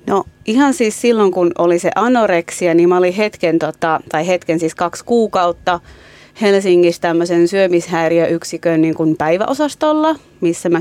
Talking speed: 145 wpm